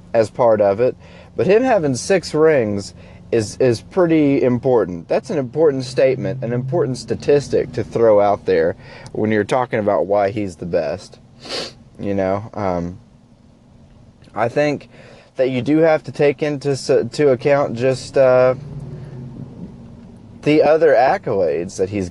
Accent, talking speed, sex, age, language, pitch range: American, 145 wpm, male, 20-39, English, 115-145 Hz